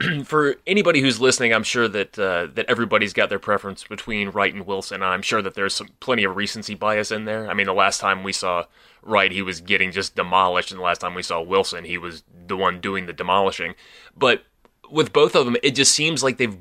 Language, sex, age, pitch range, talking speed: English, male, 20-39, 105-135 Hz, 240 wpm